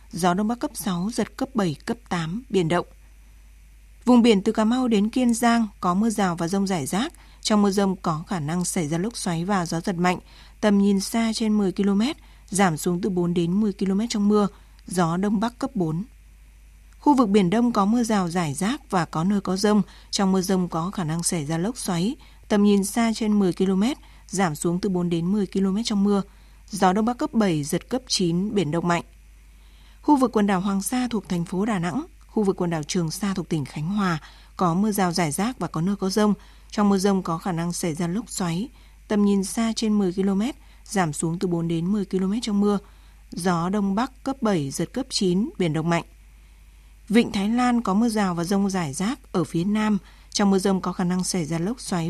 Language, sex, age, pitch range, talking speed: Vietnamese, female, 20-39, 175-215 Hz, 230 wpm